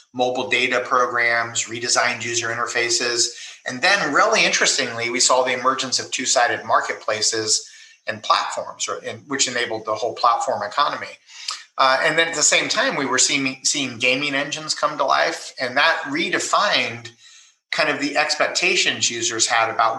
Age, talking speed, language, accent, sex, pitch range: 30-49, 160 wpm, Italian, American, male, 115-130 Hz